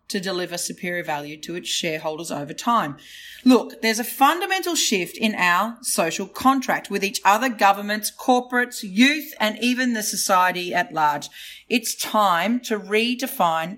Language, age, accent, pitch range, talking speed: English, 30-49, Australian, 180-240 Hz, 150 wpm